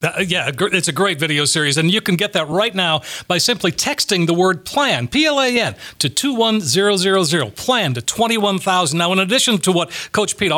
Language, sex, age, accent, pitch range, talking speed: English, male, 40-59, American, 170-210 Hz, 185 wpm